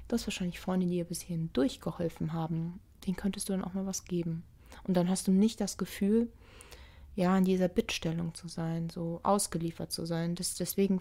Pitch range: 165-190 Hz